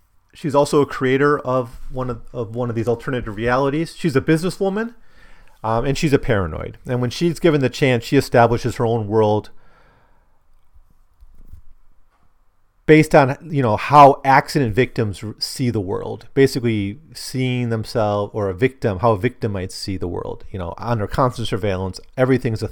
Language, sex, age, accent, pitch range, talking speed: English, male, 30-49, American, 95-130 Hz, 165 wpm